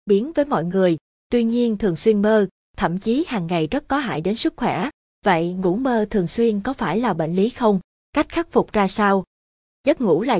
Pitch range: 170-225 Hz